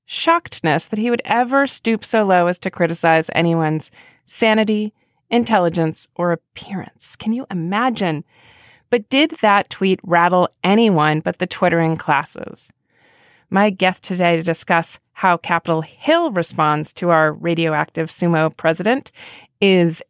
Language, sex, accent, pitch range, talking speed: English, female, American, 165-220 Hz, 130 wpm